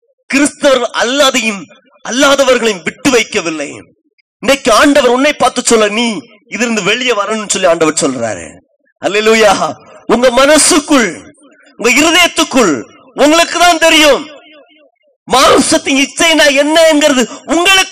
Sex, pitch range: male, 230-310 Hz